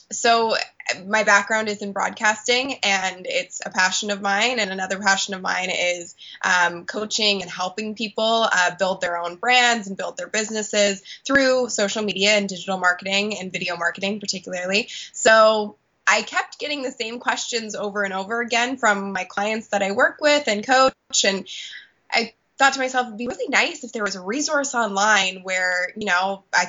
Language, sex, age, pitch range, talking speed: English, female, 20-39, 190-225 Hz, 180 wpm